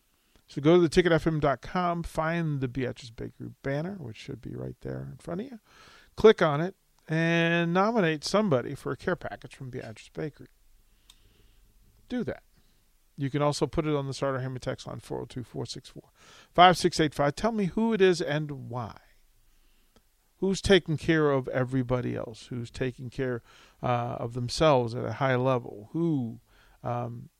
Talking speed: 155 wpm